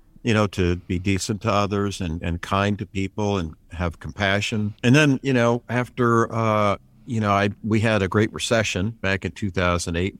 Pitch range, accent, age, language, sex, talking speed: 90-110 Hz, American, 50-69, English, male, 190 wpm